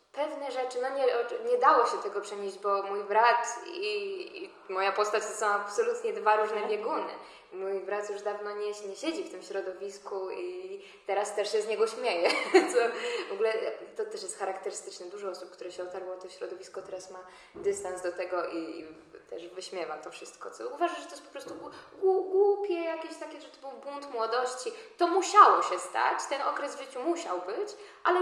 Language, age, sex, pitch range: Polish, 10-29, female, 195-315 Hz